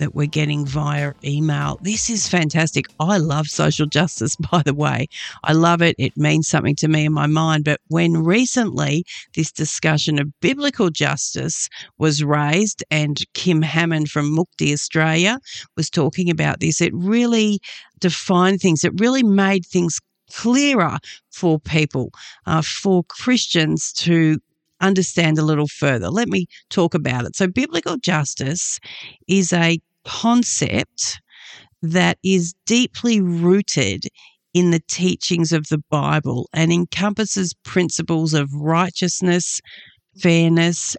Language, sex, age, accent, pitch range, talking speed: English, female, 50-69, Australian, 155-185 Hz, 135 wpm